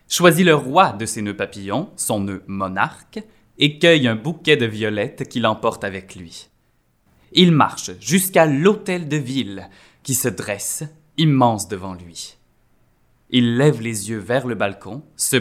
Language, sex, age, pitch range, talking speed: French, male, 20-39, 100-145 Hz, 155 wpm